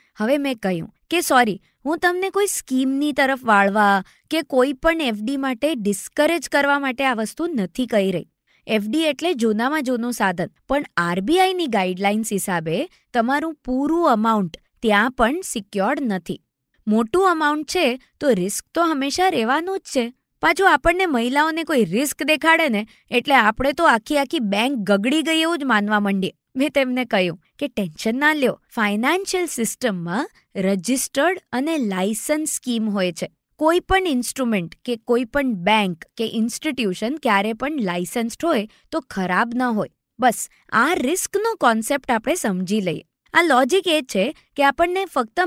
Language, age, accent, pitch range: Gujarati, 20-39, native, 215-310 Hz